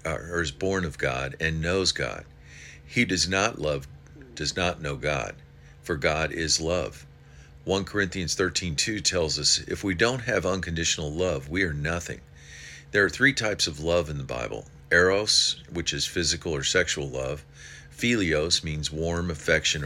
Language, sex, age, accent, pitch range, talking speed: English, male, 50-69, American, 70-90 Hz, 165 wpm